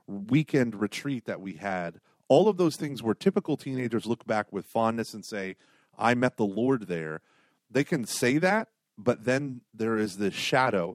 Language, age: English, 30-49